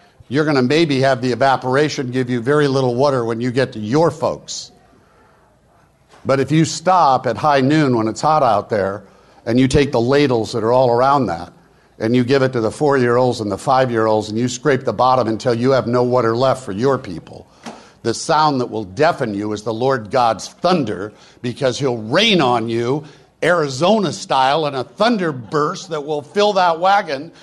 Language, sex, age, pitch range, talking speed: English, male, 60-79, 130-190 Hz, 195 wpm